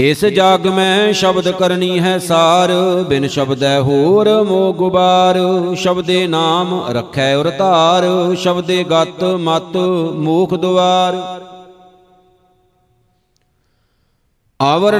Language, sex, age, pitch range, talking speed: Punjabi, male, 50-69, 165-185 Hz, 90 wpm